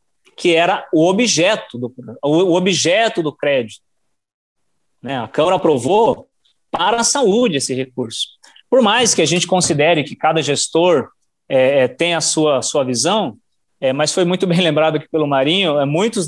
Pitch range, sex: 145-200 Hz, male